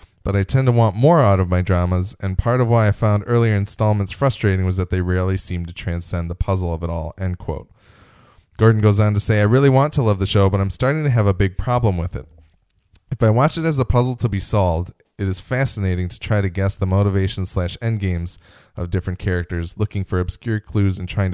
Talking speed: 240 wpm